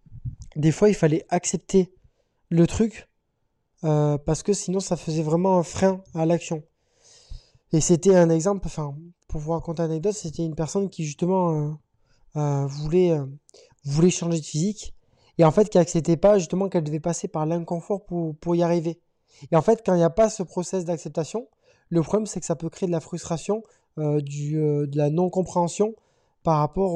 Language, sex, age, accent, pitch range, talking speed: French, male, 20-39, French, 160-190 Hz, 195 wpm